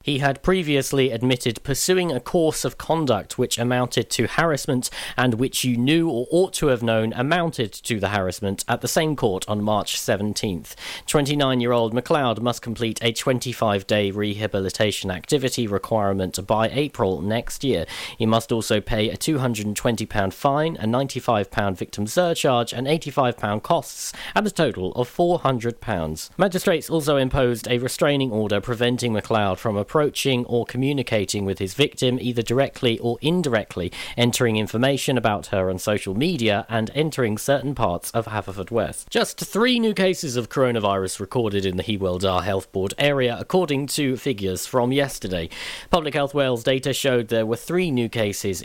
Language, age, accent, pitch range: English, 40-59, British, 105-140 Hz